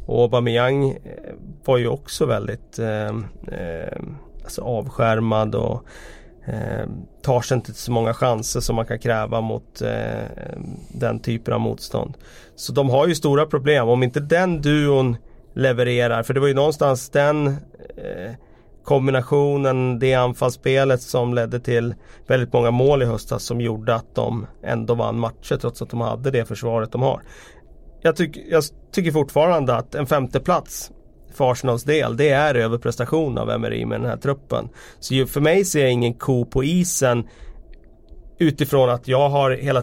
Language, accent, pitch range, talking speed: Swedish, native, 115-140 Hz, 160 wpm